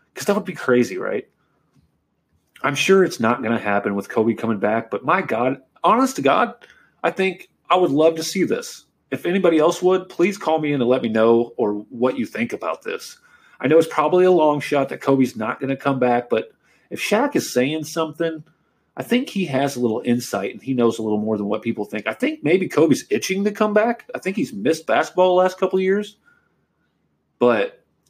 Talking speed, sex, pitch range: 225 wpm, male, 115-175 Hz